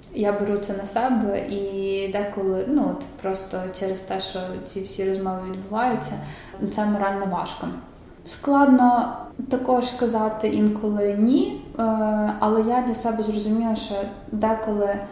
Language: Ukrainian